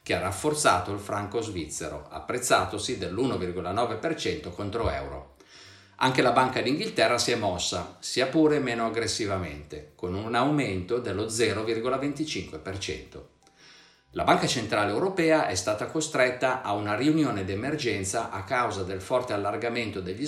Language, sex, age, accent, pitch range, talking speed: Italian, male, 50-69, native, 95-130 Hz, 125 wpm